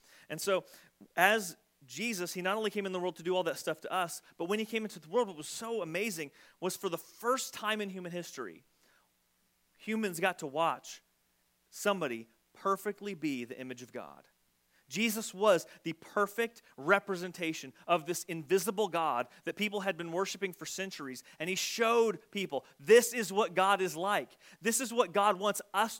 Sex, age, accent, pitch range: male, 30-49, American, 170-220 Hz